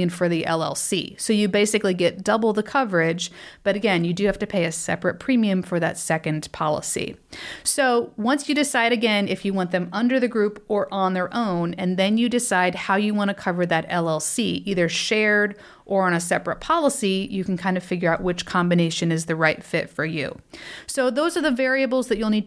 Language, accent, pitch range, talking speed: English, American, 180-235 Hz, 215 wpm